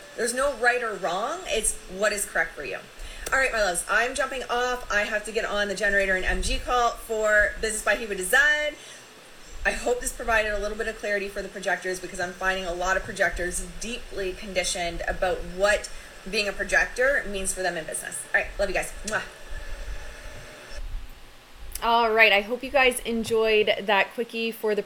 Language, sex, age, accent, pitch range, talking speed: English, female, 20-39, American, 195-240 Hz, 195 wpm